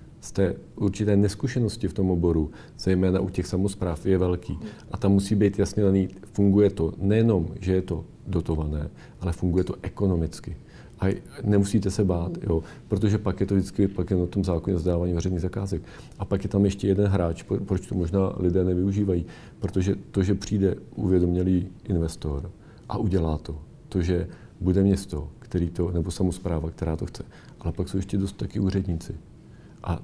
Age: 40-59